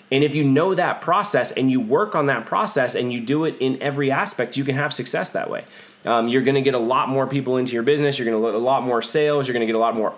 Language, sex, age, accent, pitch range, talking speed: English, male, 20-39, American, 115-140 Hz, 305 wpm